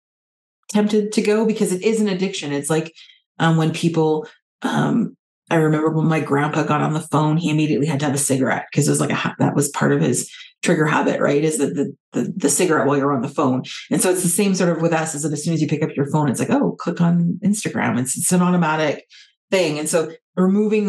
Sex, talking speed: female, 255 wpm